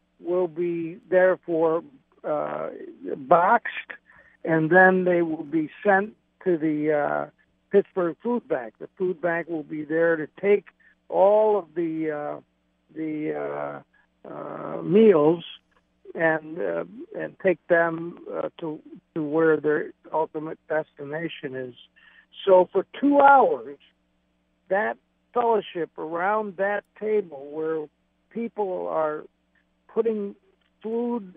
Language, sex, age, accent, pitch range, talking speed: English, male, 60-79, American, 155-205 Hz, 115 wpm